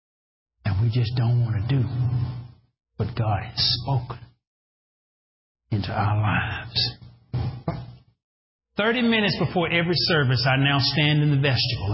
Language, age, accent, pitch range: English, 40-59, American, 115-155 Hz